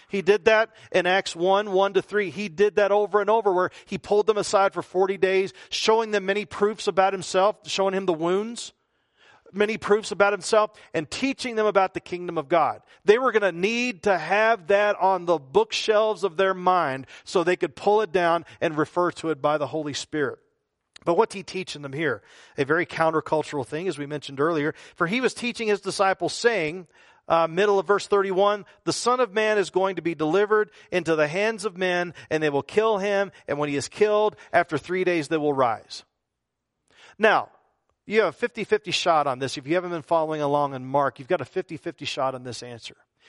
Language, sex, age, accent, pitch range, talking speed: English, male, 40-59, American, 165-210 Hz, 215 wpm